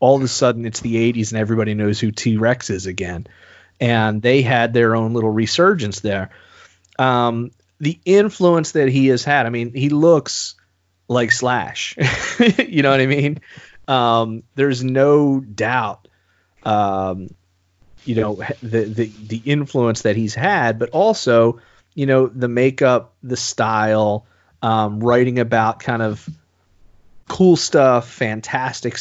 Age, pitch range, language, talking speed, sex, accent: 30-49, 100-130 Hz, English, 145 wpm, male, American